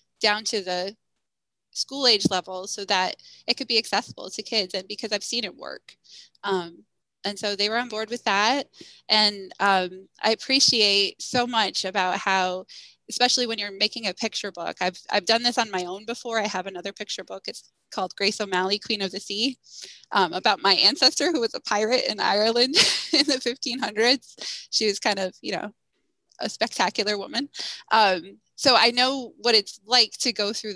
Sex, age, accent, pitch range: female, 20-39, American, 195-235 Hz